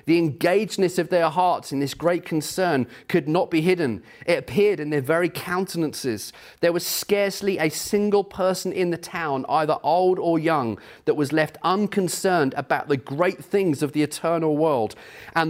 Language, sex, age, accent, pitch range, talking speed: English, male, 30-49, British, 130-165 Hz, 175 wpm